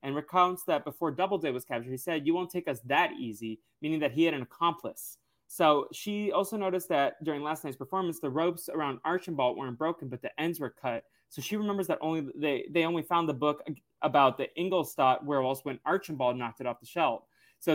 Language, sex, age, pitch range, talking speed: English, male, 20-39, 135-180 Hz, 215 wpm